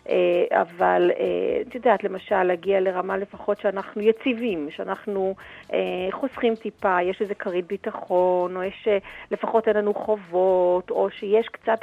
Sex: female